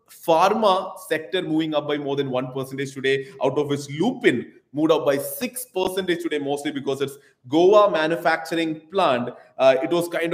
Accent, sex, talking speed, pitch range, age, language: Indian, male, 175 wpm, 130-170 Hz, 20-39, English